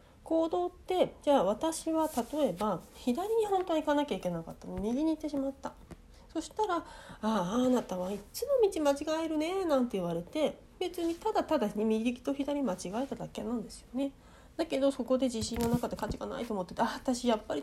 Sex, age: female, 30-49